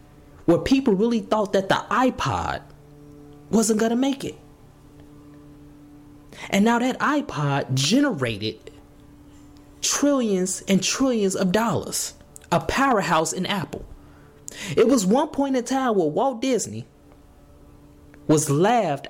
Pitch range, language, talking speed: 145-215 Hz, English, 115 wpm